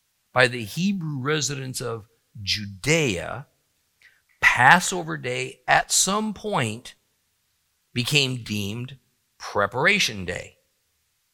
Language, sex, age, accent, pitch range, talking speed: English, male, 50-69, American, 115-175 Hz, 80 wpm